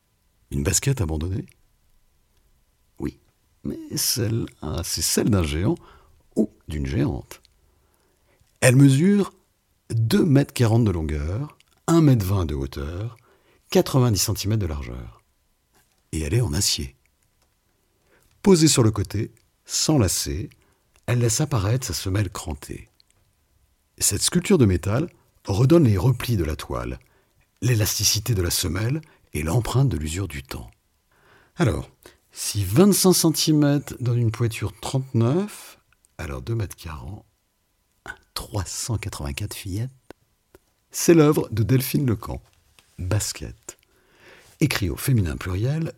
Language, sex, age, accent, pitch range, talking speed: French, male, 60-79, French, 90-130 Hz, 115 wpm